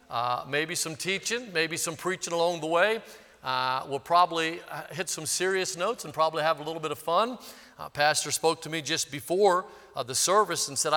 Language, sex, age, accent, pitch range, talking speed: English, male, 50-69, American, 135-165 Hz, 210 wpm